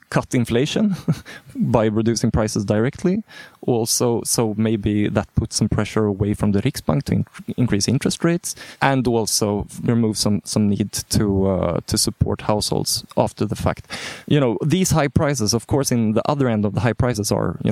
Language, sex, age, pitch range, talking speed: English, male, 20-39, 105-130 Hz, 180 wpm